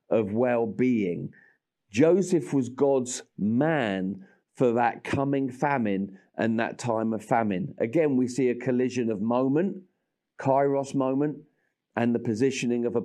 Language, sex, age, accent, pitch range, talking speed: English, male, 40-59, British, 110-135 Hz, 135 wpm